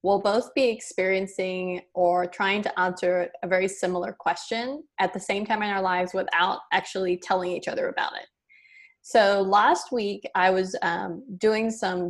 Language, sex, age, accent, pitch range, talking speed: English, female, 20-39, American, 185-235 Hz, 170 wpm